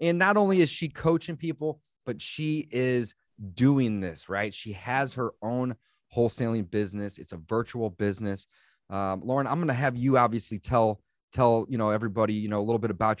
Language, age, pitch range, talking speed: English, 30-49, 105-140 Hz, 190 wpm